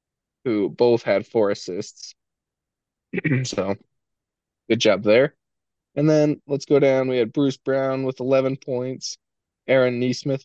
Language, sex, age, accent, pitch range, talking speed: English, male, 20-39, American, 105-130 Hz, 130 wpm